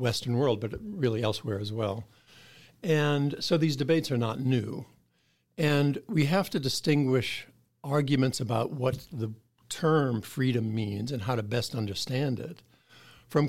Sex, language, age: male, English, 50-69